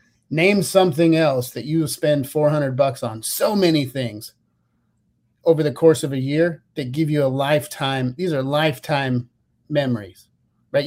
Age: 30-49